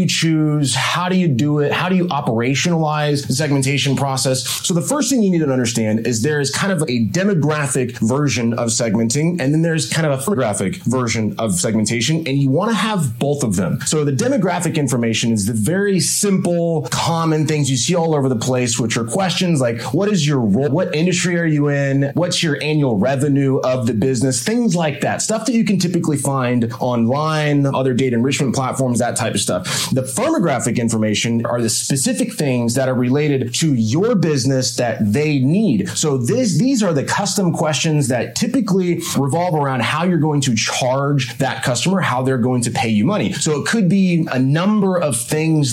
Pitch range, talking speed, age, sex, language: 130-170 Hz, 200 wpm, 30-49, male, English